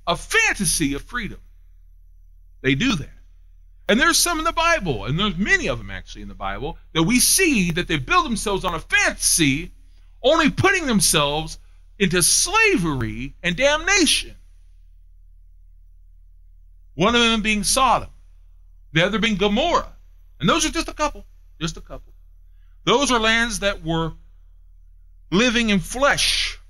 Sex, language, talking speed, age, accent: male, English, 145 wpm, 40-59, American